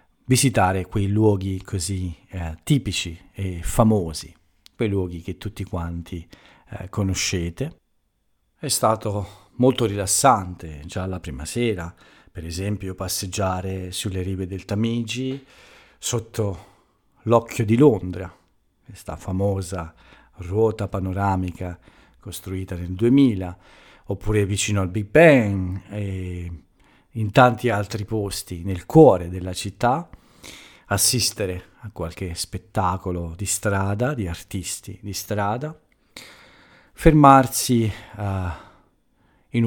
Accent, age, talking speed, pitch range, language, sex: native, 50-69, 100 wpm, 90-110 Hz, Italian, male